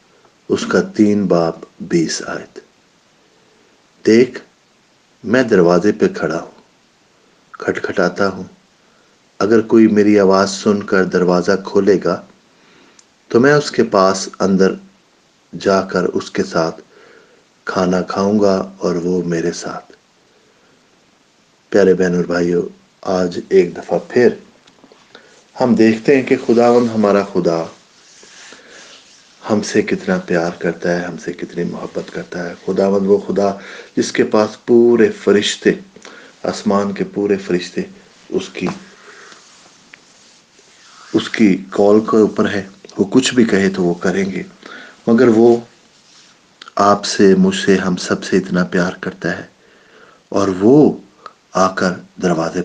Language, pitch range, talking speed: English, 90-110 Hz, 110 wpm